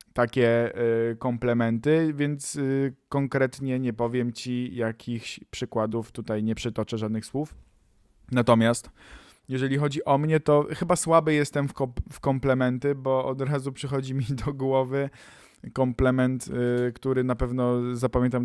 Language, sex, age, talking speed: Polish, male, 20-39, 120 wpm